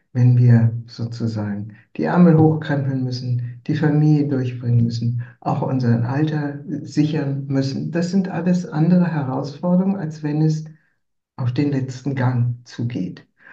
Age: 60-79